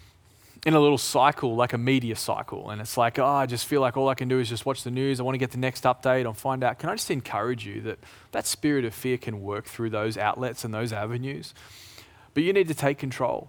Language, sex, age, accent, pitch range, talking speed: English, male, 20-39, Australian, 110-135 Hz, 260 wpm